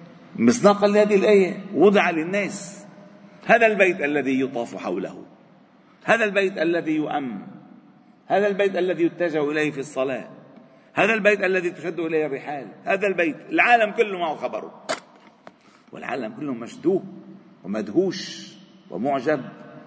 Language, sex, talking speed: Arabic, male, 115 wpm